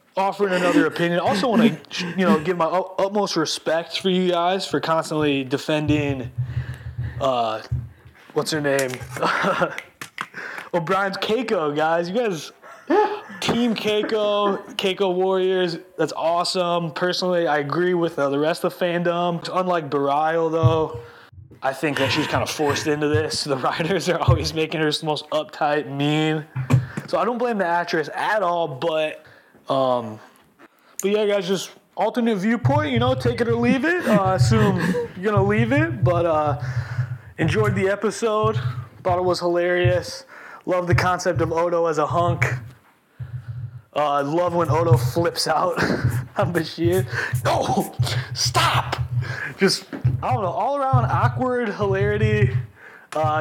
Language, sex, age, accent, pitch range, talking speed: English, male, 20-39, American, 130-180 Hz, 145 wpm